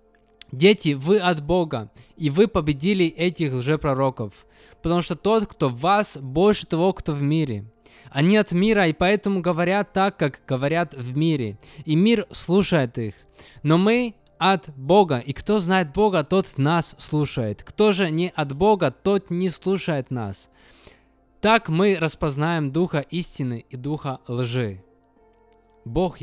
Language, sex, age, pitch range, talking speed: Russian, male, 20-39, 130-185 Hz, 145 wpm